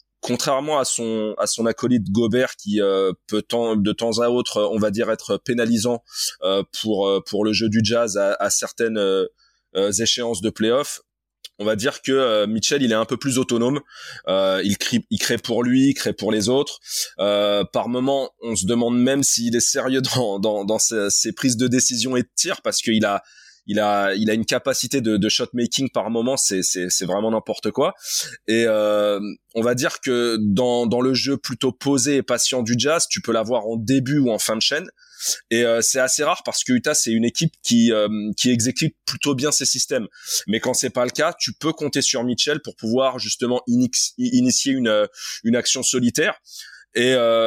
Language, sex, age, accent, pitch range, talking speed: French, male, 20-39, French, 110-135 Hz, 210 wpm